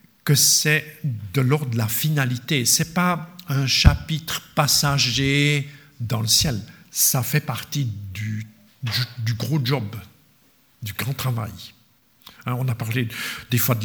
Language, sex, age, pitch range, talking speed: French, male, 60-79, 115-145 Hz, 145 wpm